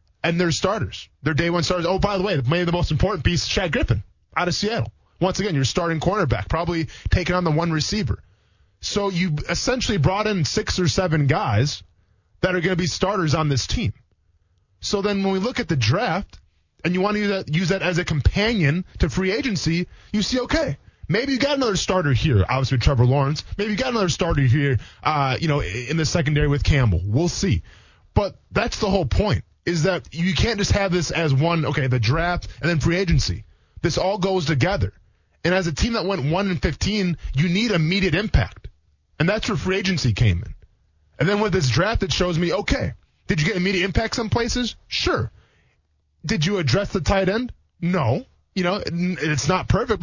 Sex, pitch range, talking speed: male, 130-185 Hz, 210 wpm